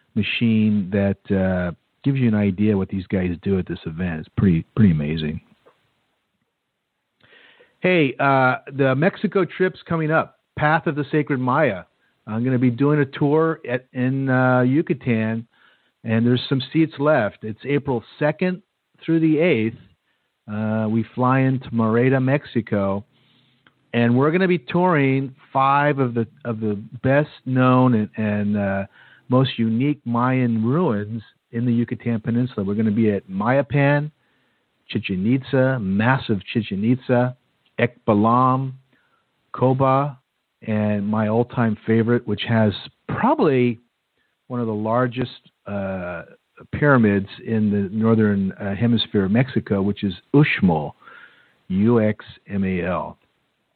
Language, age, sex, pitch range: English, 50-69, male, 105-135 Hz